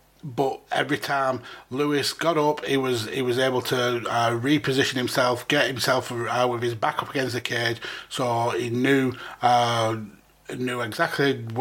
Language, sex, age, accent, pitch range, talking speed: English, male, 30-49, British, 120-135 Hz, 160 wpm